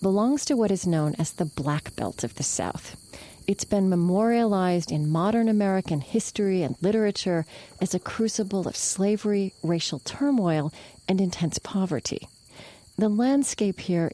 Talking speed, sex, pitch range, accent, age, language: 145 wpm, female, 165-215 Hz, American, 40-59, English